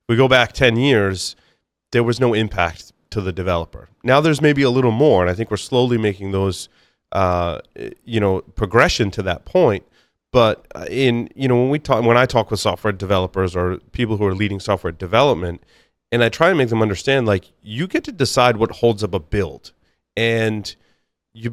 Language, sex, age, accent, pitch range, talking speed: English, male, 30-49, American, 95-120 Hz, 190 wpm